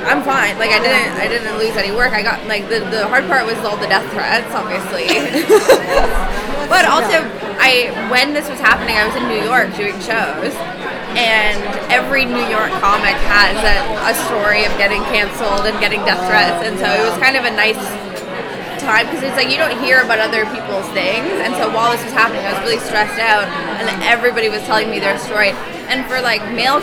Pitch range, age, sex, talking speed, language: 215-250 Hz, 20-39, female, 210 wpm, English